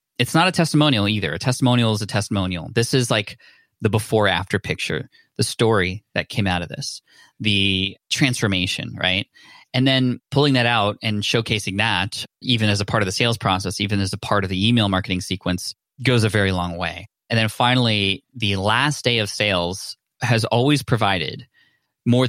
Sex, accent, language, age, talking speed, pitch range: male, American, English, 20-39, 185 wpm, 100-120 Hz